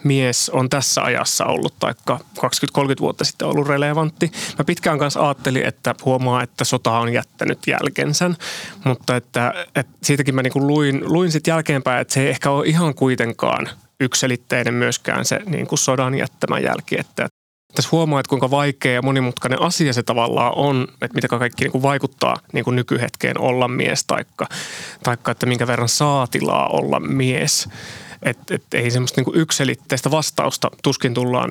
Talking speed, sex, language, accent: 165 wpm, male, Finnish, native